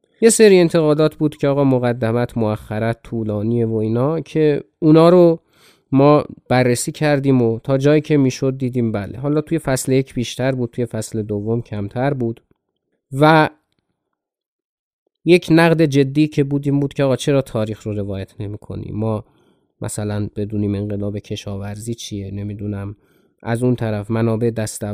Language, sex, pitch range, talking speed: Persian, male, 110-150 Hz, 150 wpm